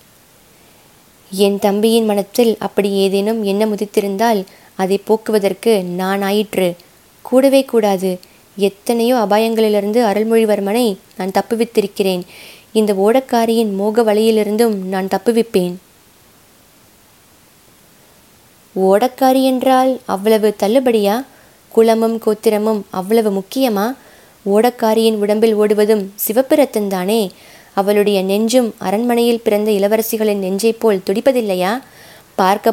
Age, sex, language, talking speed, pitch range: 20-39, female, Tamil, 85 wpm, 200-230 Hz